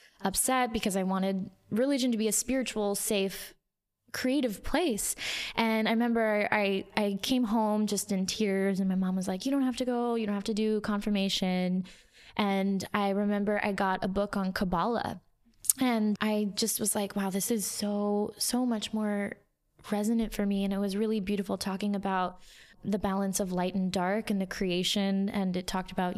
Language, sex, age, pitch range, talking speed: English, female, 20-39, 195-225 Hz, 190 wpm